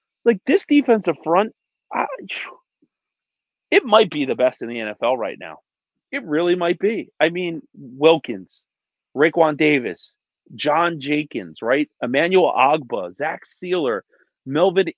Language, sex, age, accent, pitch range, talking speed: English, male, 40-59, American, 145-215 Hz, 130 wpm